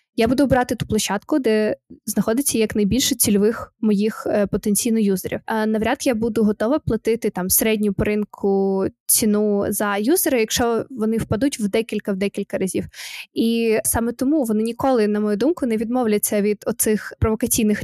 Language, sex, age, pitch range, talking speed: Ukrainian, female, 20-39, 215-245 Hz, 150 wpm